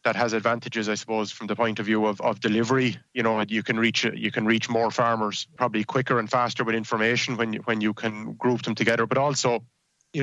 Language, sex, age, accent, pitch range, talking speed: English, male, 20-39, Irish, 110-125 Hz, 235 wpm